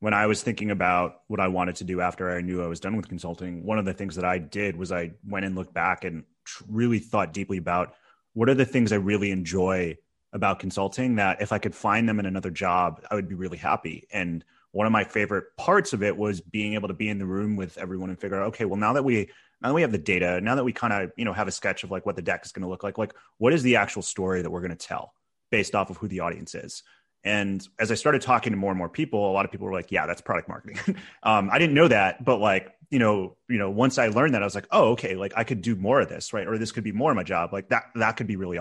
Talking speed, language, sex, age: 300 wpm, English, male, 30-49